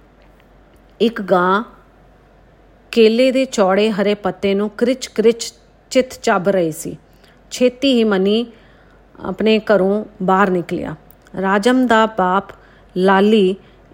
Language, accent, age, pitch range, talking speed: English, Indian, 40-59, 195-230 Hz, 95 wpm